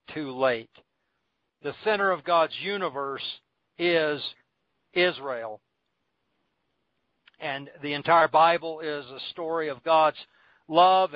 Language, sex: English, male